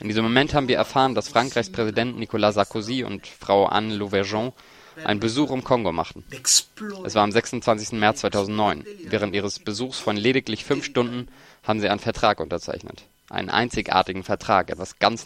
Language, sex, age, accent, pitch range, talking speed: German, male, 20-39, German, 105-130 Hz, 170 wpm